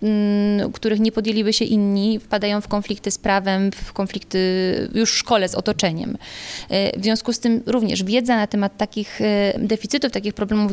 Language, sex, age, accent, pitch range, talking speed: Polish, female, 20-39, native, 195-230 Hz, 160 wpm